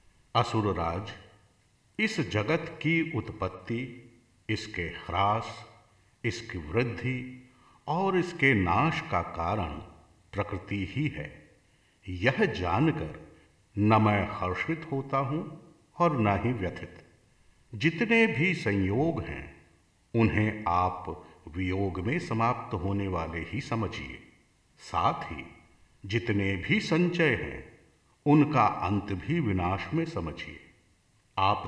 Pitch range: 90-135 Hz